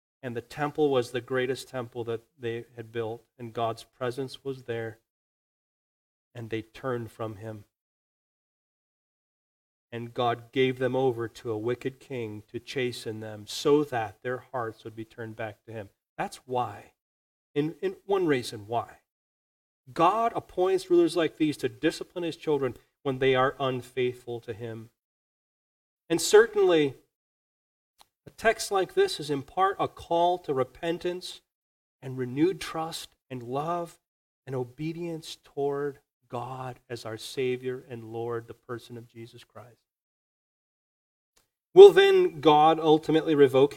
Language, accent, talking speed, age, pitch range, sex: English, American, 135 wpm, 40-59, 115-160 Hz, male